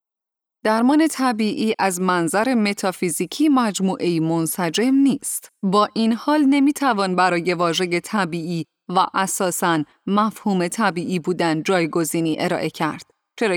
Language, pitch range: Persian, 180-245 Hz